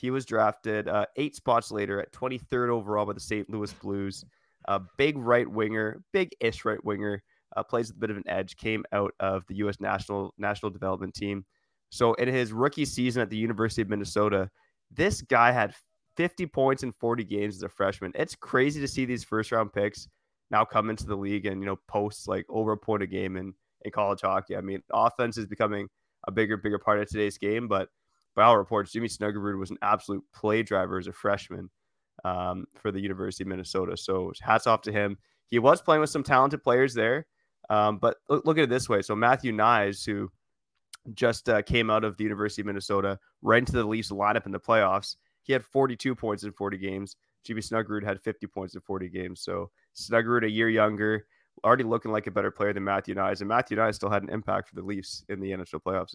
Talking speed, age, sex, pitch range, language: 220 wpm, 20-39, male, 100-115 Hz, English